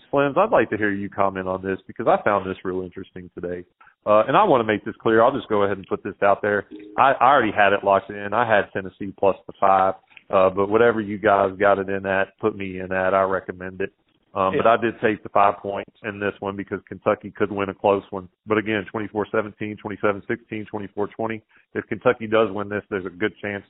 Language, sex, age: English, male, 40-59